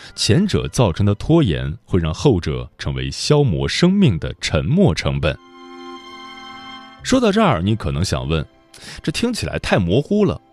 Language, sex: Chinese, male